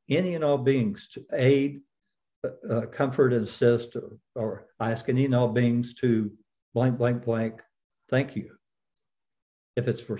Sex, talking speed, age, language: male, 155 wpm, 60-79, English